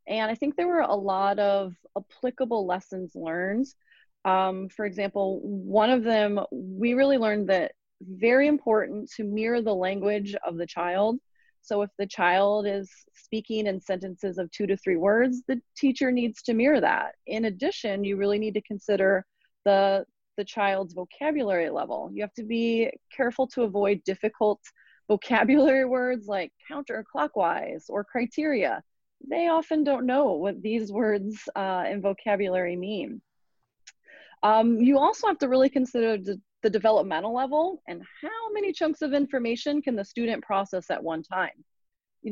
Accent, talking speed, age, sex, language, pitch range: American, 155 wpm, 30-49, female, English, 200-260 Hz